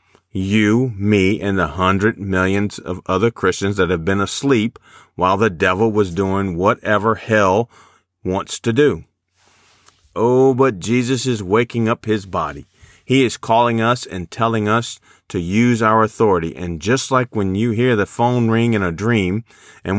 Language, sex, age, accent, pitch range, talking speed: English, male, 40-59, American, 95-115 Hz, 165 wpm